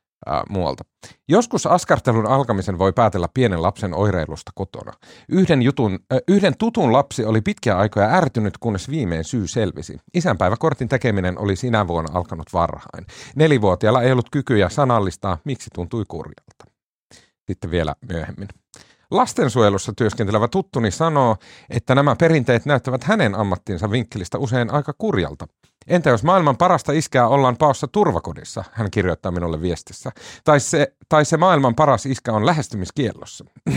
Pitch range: 100-145 Hz